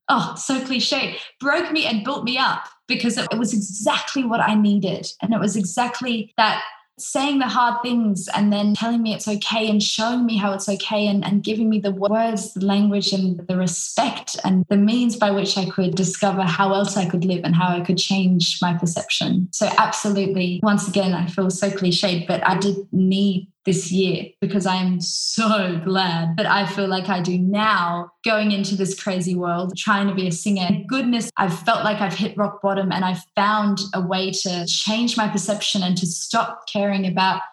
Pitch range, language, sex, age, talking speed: 185-215 Hz, English, female, 20-39, 205 wpm